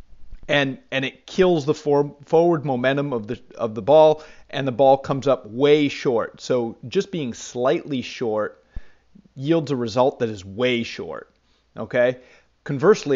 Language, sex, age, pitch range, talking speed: English, male, 30-49, 125-160 Hz, 155 wpm